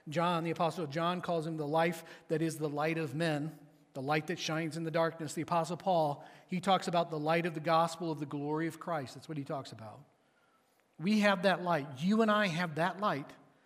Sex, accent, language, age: male, American, English, 40-59